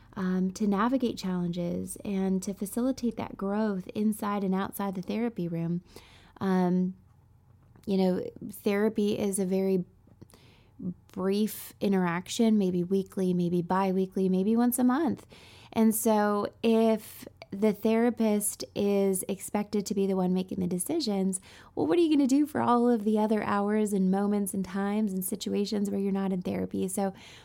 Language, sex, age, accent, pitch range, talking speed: English, female, 20-39, American, 185-225 Hz, 155 wpm